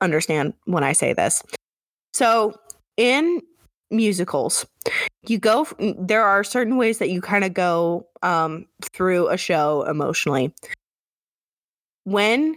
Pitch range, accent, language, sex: 170-210 Hz, American, English, female